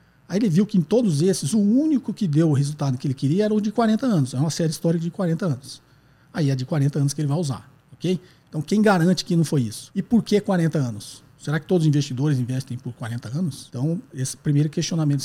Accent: Brazilian